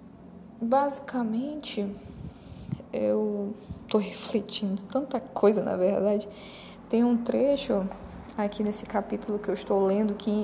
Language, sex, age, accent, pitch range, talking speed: Portuguese, female, 10-29, Brazilian, 210-240 Hz, 110 wpm